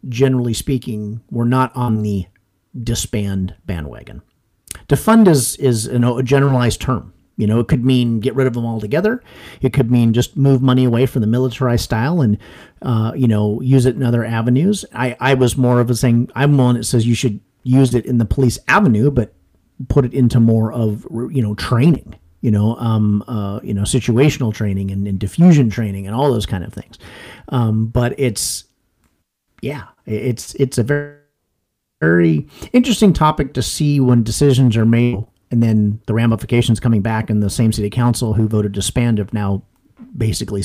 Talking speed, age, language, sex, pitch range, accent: 185 wpm, 40-59, English, male, 110-135 Hz, American